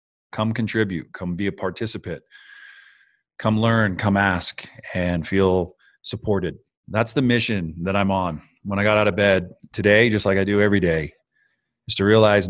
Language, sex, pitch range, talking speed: English, male, 90-110 Hz, 170 wpm